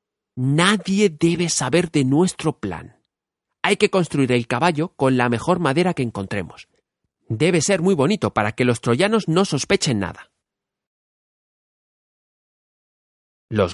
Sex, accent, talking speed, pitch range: male, Spanish, 125 wpm, 105-155 Hz